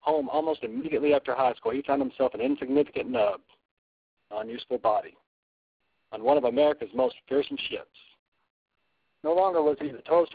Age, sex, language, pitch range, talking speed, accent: 60-79, male, English, 130-160 Hz, 160 wpm, American